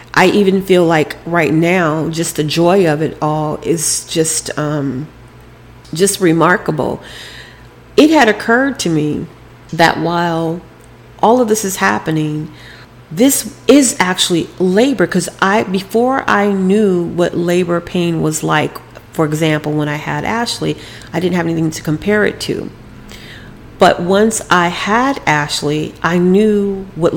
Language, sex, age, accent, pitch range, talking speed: English, female, 40-59, American, 155-200 Hz, 145 wpm